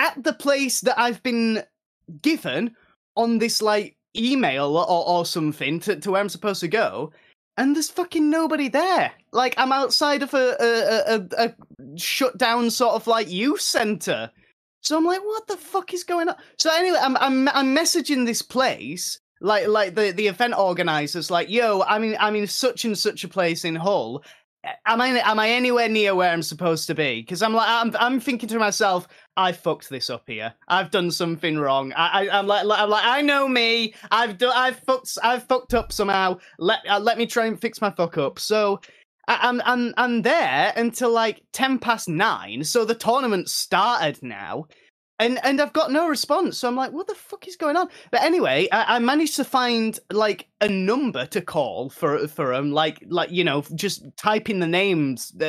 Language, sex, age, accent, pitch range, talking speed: English, male, 20-39, British, 180-260 Hz, 200 wpm